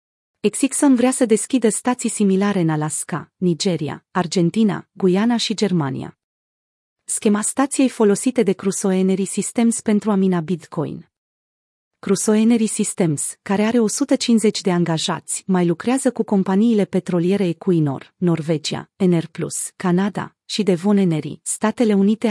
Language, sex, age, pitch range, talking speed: Romanian, female, 30-49, 175-215 Hz, 125 wpm